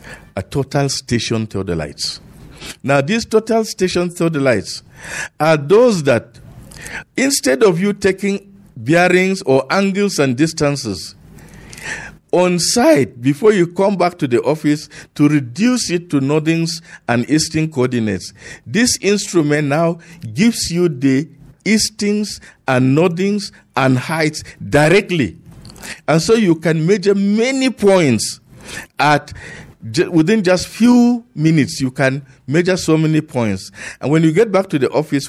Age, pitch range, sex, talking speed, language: 50-69, 125-180 Hz, male, 140 wpm, English